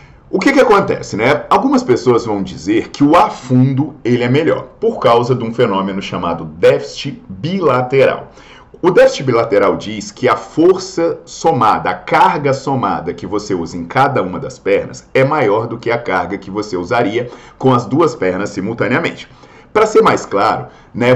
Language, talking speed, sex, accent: Portuguese, 175 wpm, male, Brazilian